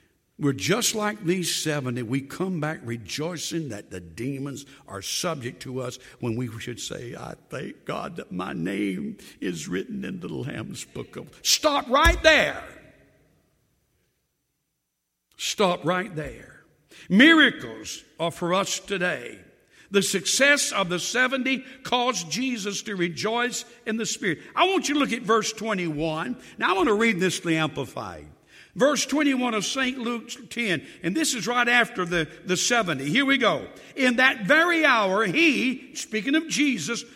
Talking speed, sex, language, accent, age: 160 wpm, male, English, American, 60-79